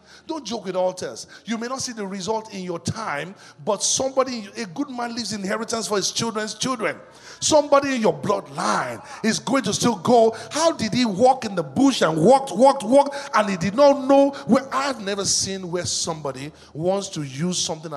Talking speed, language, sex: 195 wpm, English, male